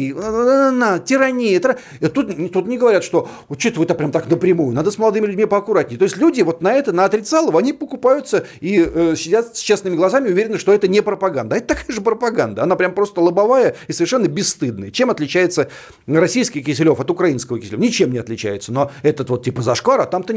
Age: 40-59